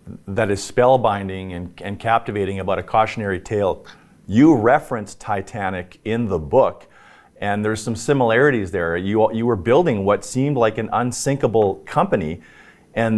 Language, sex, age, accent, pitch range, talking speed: English, male, 40-59, American, 100-120 Hz, 145 wpm